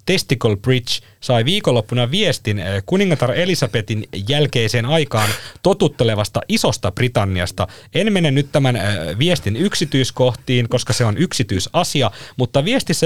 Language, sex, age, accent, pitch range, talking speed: Finnish, male, 30-49, native, 105-140 Hz, 110 wpm